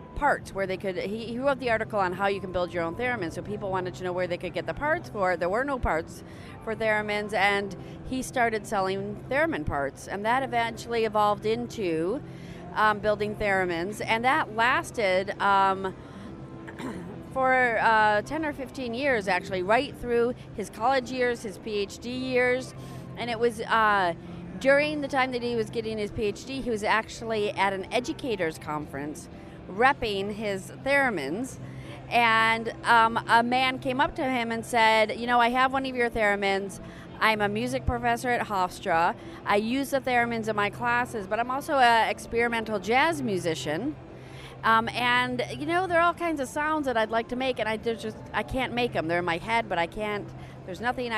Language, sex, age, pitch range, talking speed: English, female, 40-59, 195-250 Hz, 185 wpm